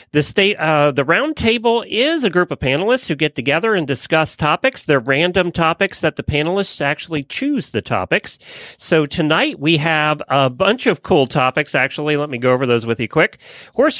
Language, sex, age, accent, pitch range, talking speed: English, male, 40-59, American, 120-165 Hz, 195 wpm